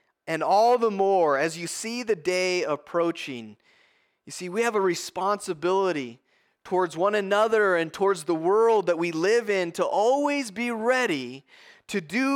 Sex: male